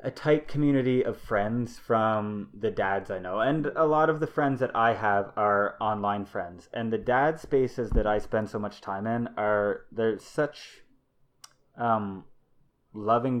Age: 20-39